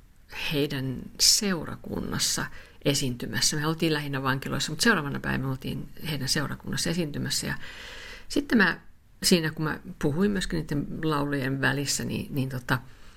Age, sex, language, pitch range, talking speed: 50-69, female, Finnish, 130-165 Hz, 130 wpm